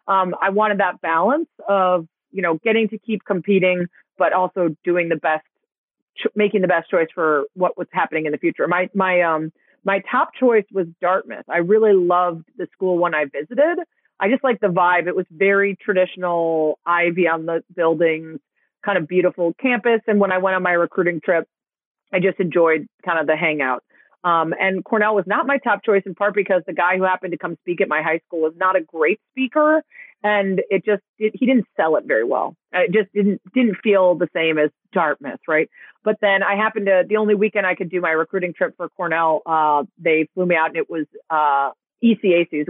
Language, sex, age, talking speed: English, female, 30-49, 210 wpm